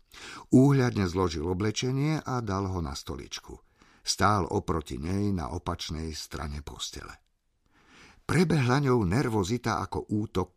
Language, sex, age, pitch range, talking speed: Slovak, male, 50-69, 85-125 Hz, 115 wpm